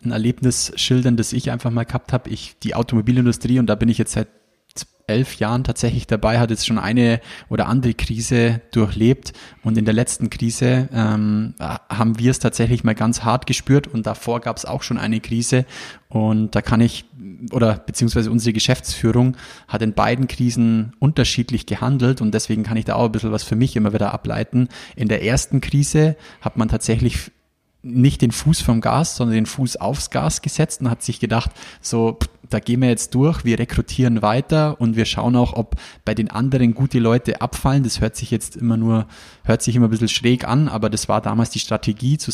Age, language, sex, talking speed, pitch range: 20-39, German, male, 200 wpm, 110-125 Hz